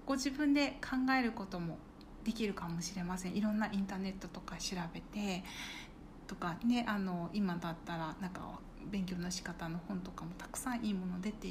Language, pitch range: Japanese, 185-255 Hz